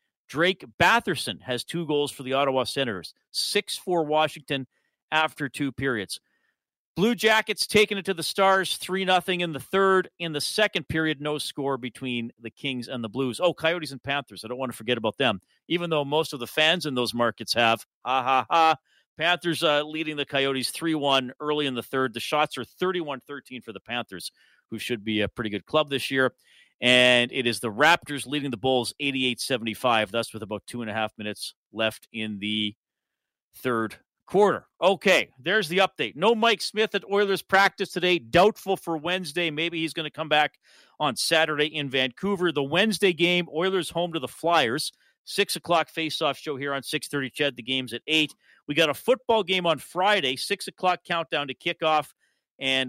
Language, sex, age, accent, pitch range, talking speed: English, male, 40-59, American, 125-175 Hz, 190 wpm